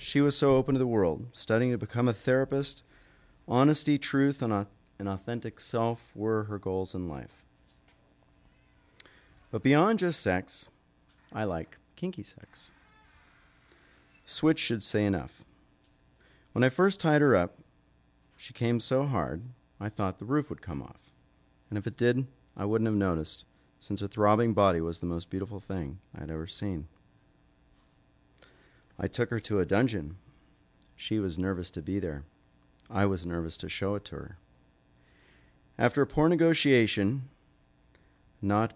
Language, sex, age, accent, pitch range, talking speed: English, male, 40-59, American, 80-115 Hz, 150 wpm